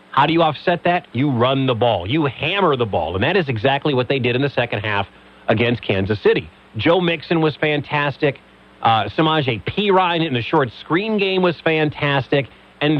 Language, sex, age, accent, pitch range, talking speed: English, male, 40-59, American, 120-160 Hz, 200 wpm